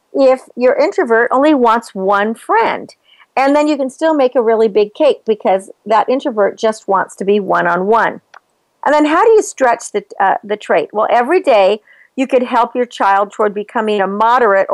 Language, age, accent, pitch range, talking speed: English, 50-69, American, 215-285 Hz, 190 wpm